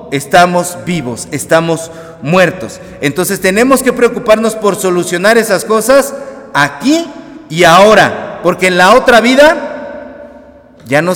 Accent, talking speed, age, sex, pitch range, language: Mexican, 120 wpm, 40-59, male, 175-235 Hz, Spanish